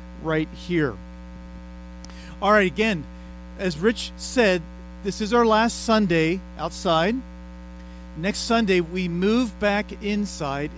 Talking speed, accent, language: 110 wpm, American, English